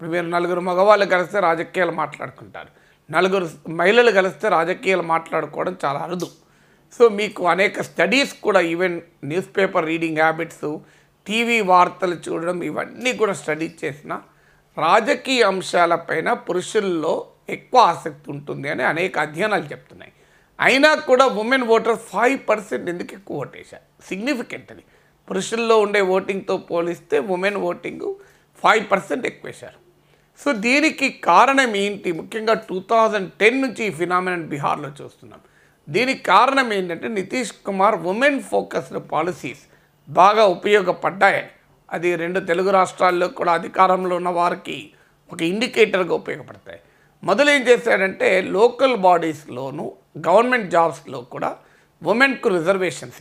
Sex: male